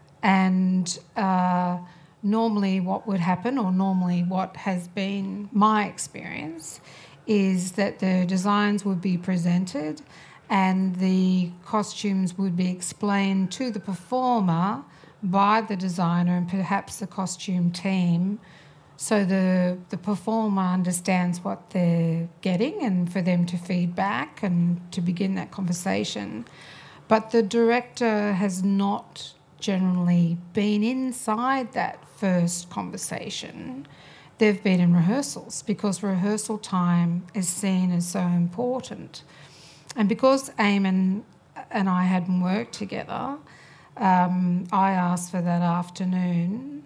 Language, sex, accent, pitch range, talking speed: English, female, Australian, 175-205 Hz, 120 wpm